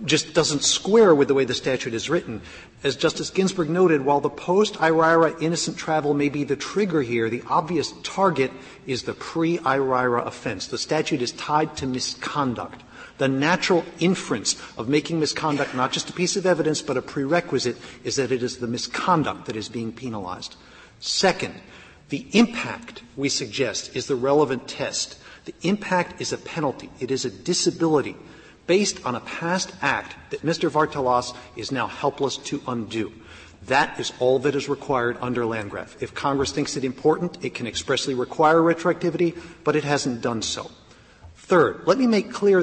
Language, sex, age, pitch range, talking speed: English, male, 50-69, 130-170 Hz, 170 wpm